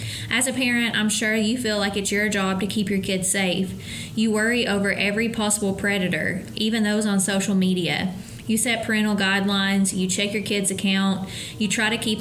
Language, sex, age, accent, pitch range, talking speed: English, female, 20-39, American, 180-215 Hz, 195 wpm